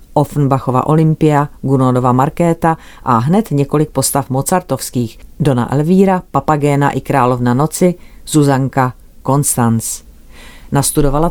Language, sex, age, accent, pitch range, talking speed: Czech, female, 40-59, native, 130-160 Hz, 95 wpm